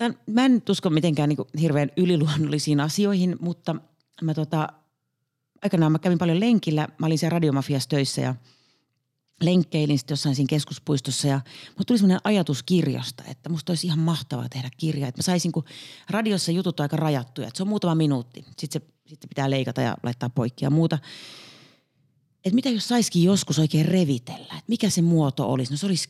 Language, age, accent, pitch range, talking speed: Finnish, 30-49, native, 135-170 Hz, 180 wpm